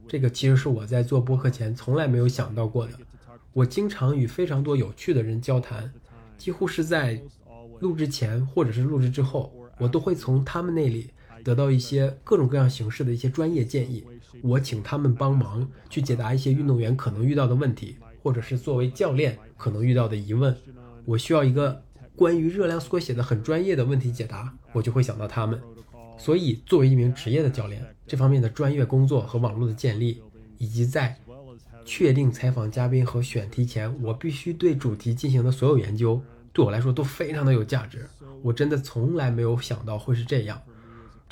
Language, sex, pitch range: Chinese, male, 115-140 Hz